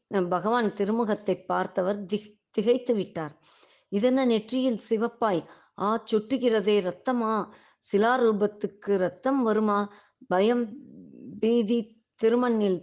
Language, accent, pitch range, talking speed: Tamil, native, 195-235 Hz, 50 wpm